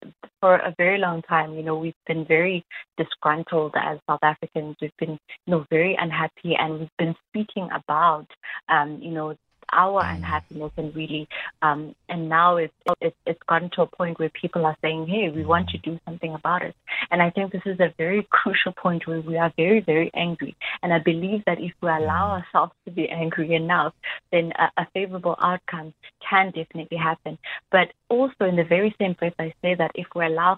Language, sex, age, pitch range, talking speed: English, female, 20-39, 160-180 Hz, 200 wpm